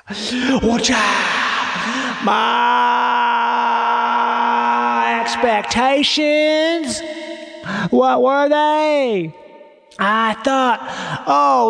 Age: 30-49